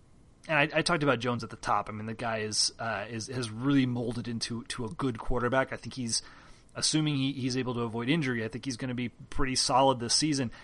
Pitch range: 115-140 Hz